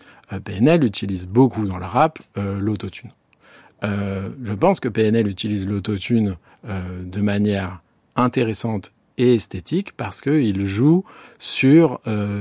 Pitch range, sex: 100-135 Hz, male